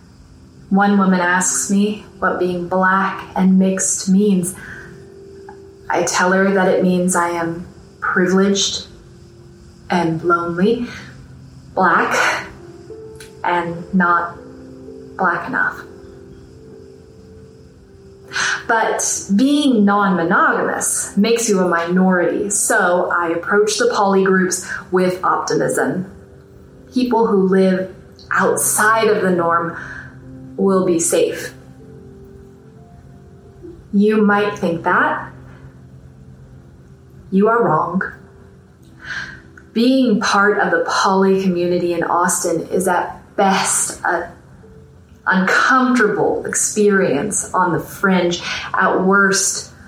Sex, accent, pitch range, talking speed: female, American, 170-200 Hz, 95 wpm